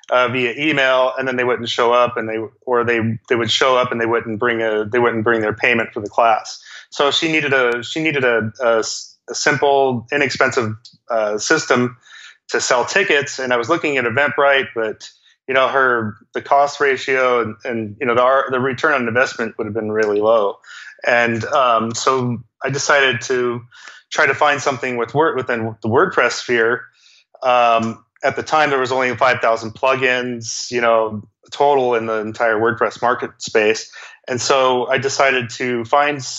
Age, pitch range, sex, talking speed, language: 30-49, 115-135 Hz, male, 185 wpm, English